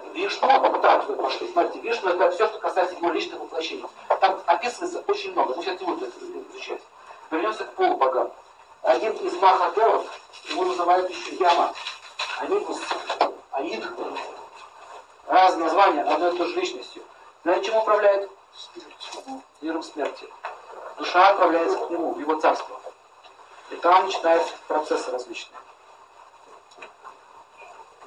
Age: 40-59